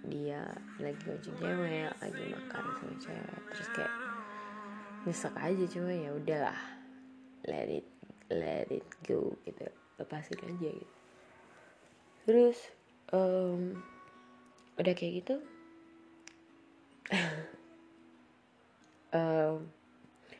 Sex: female